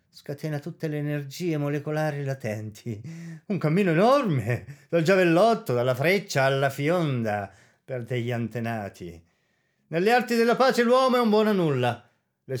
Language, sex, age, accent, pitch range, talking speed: Italian, male, 30-49, native, 130-180 Hz, 135 wpm